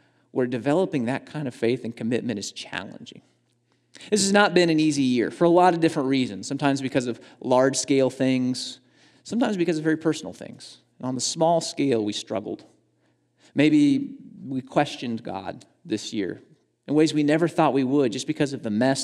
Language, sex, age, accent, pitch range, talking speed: English, male, 30-49, American, 115-155 Hz, 185 wpm